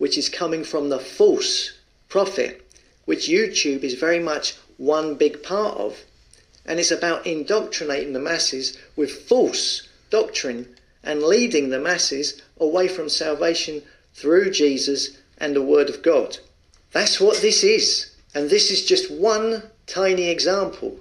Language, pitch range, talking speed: English, 145-215 Hz, 145 wpm